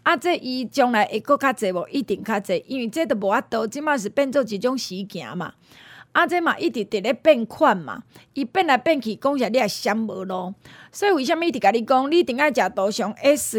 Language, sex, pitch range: Chinese, female, 225-305 Hz